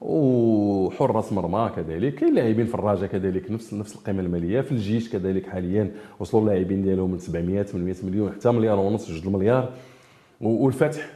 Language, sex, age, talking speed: French, male, 40-59, 150 wpm